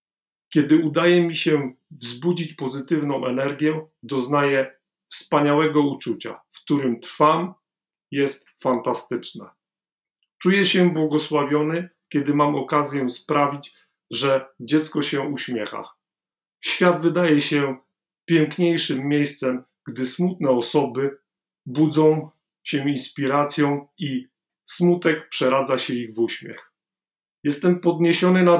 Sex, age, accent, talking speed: male, 40-59, native, 100 wpm